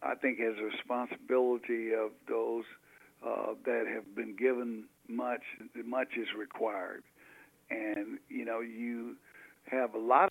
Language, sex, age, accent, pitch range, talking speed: English, male, 60-79, American, 120-140 Hz, 135 wpm